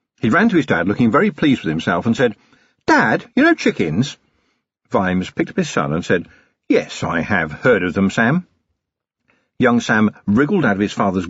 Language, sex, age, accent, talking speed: English, male, 50-69, British, 195 wpm